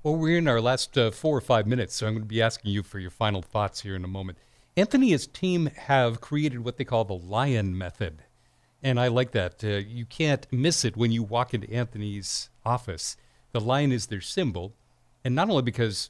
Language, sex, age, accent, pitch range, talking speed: English, male, 50-69, American, 105-140 Hz, 220 wpm